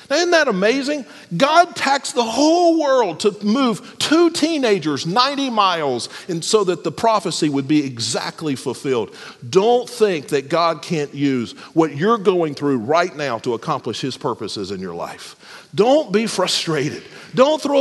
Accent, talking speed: American, 160 wpm